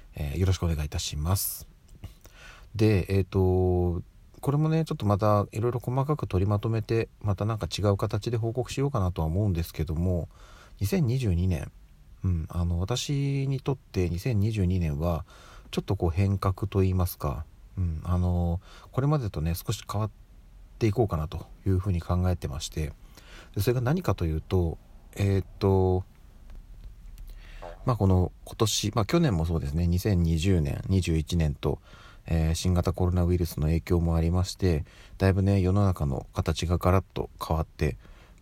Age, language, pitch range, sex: 40-59, Japanese, 85-105 Hz, male